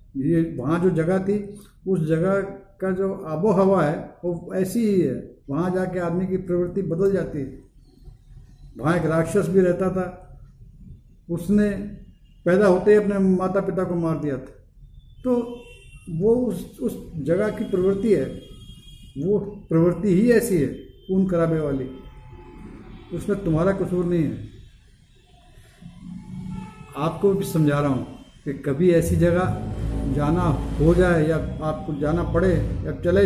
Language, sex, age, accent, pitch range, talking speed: Hindi, male, 50-69, native, 145-190 Hz, 145 wpm